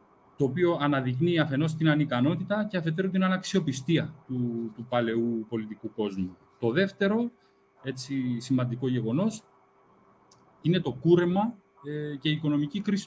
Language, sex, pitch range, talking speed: Greek, male, 130-175 Hz, 130 wpm